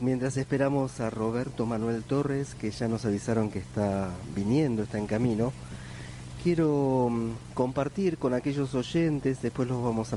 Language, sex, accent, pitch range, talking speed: Spanish, male, Argentinian, 110-135 Hz, 150 wpm